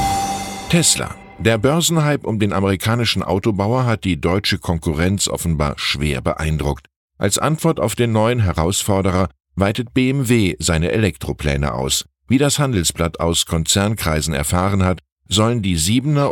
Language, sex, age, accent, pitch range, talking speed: German, male, 10-29, German, 80-115 Hz, 130 wpm